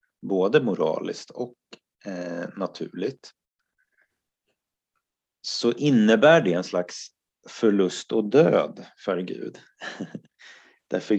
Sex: male